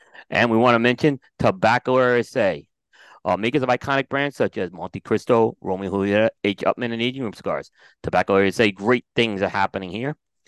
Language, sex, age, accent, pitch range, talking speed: English, male, 30-49, American, 100-130 Hz, 180 wpm